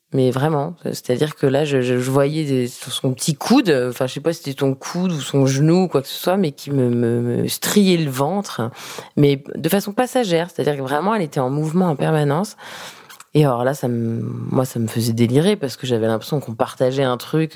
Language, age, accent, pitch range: French, 20-39, French, 130-165 Hz